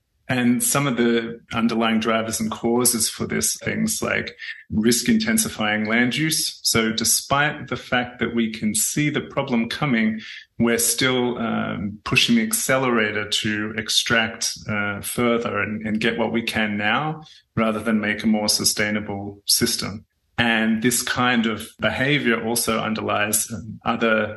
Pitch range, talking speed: 110-120 Hz, 145 wpm